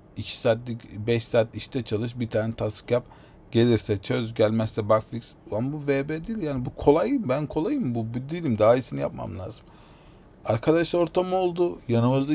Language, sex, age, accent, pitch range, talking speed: Turkish, male, 40-59, native, 110-140 Hz, 160 wpm